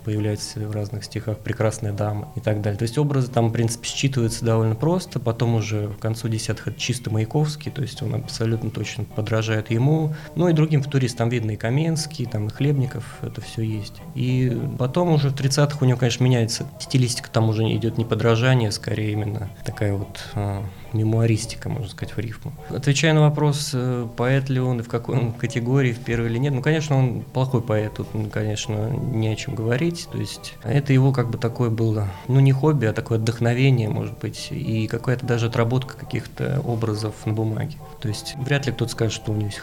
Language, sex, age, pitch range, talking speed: Russian, male, 20-39, 110-135 Hz, 200 wpm